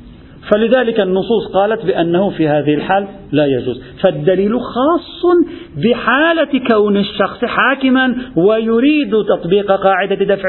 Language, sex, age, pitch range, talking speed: Arabic, male, 50-69, 135-195 Hz, 110 wpm